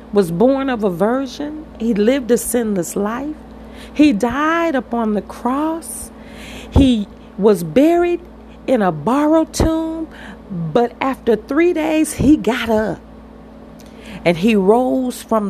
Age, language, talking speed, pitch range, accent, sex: 40-59, English, 130 wpm, 215-245 Hz, American, female